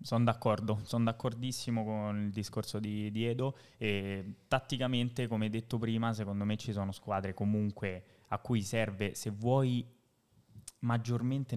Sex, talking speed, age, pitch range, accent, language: male, 135 wpm, 20-39, 100-120 Hz, native, Italian